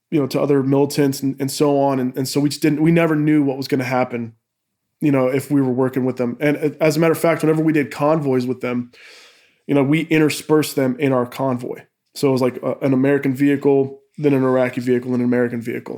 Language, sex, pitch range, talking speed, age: English, male, 130-150 Hz, 245 wpm, 20-39